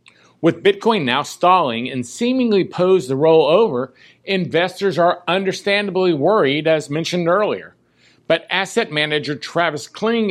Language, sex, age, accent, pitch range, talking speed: English, male, 50-69, American, 150-195 Hz, 130 wpm